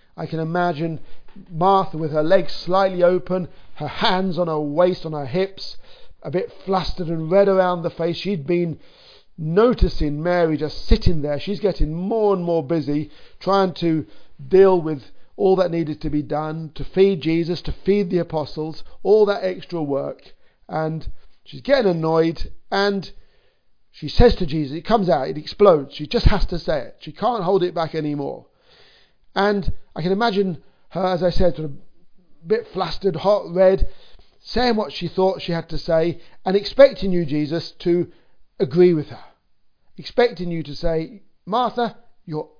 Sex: male